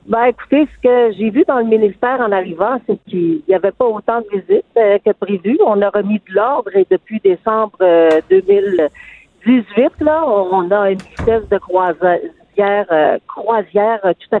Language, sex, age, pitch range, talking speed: French, female, 50-69, 195-245 Hz, 180 wpm